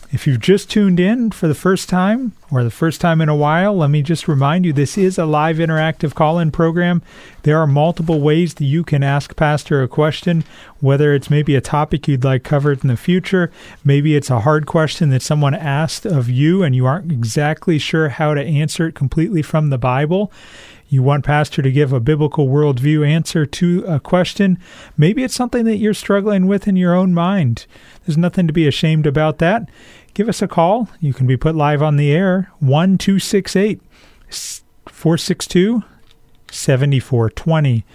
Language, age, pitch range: English, 40-59, 145-180 Hz